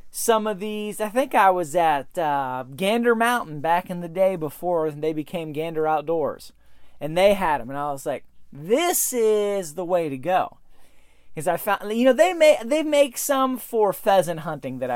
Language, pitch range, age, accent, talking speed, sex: English, 165-215 Hz, 30-49, American, 195 wpm, male